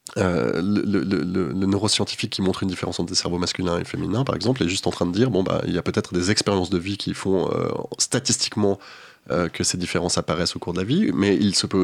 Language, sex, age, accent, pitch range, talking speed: French, male, 20-39, French, 90-120 Hz, 265 wpm